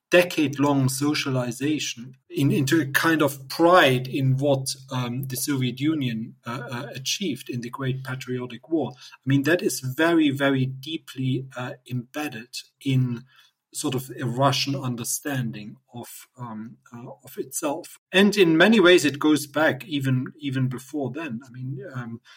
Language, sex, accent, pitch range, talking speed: English, male, German, 125-145 Hz, 150 wpm